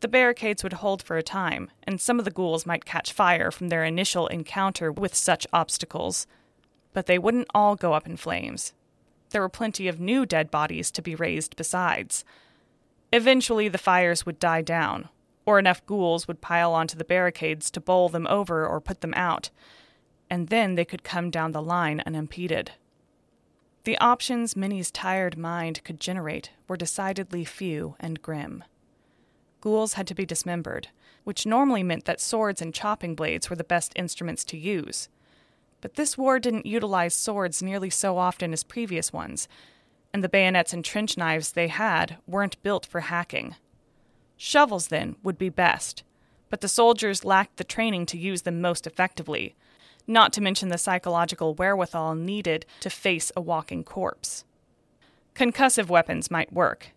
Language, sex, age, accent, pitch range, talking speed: English, female, 20-39, American, 170-200 Hz, 165 wpm